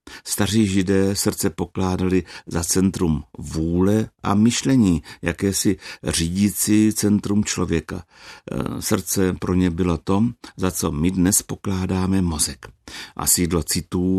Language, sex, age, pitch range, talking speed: Czech, male, 60-79, 80-95 Hz, 115 wpm